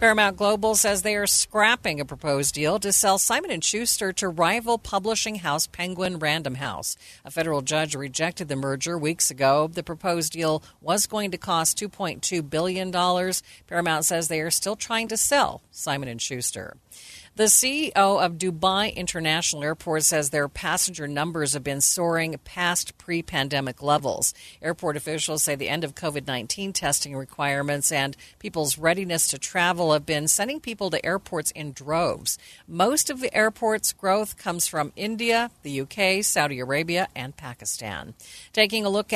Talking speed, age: 155 wpm, 50-69